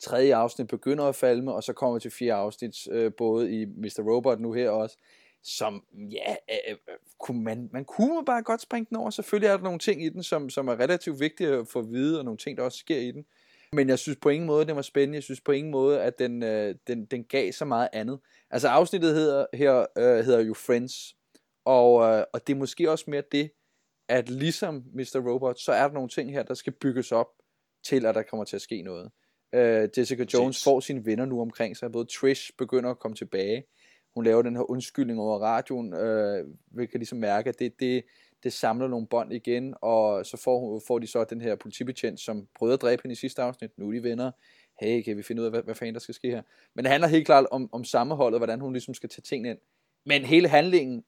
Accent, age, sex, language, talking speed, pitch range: native, 20-39, male, Danish, 240 wpm, 115-140 Hz